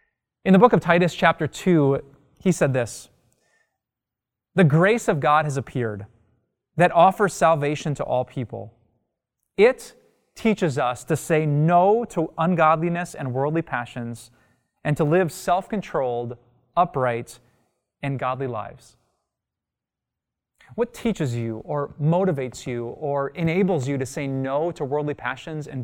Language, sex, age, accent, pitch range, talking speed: English, male, 20-39, American, 125-175 Hz, 130 wpm